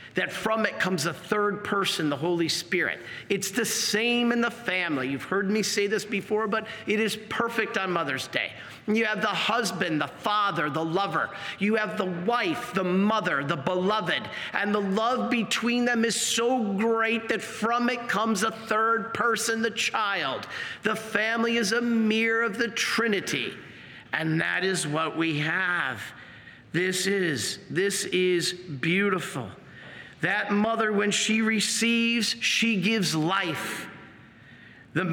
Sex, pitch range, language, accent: male, 185-225 Hz, English, American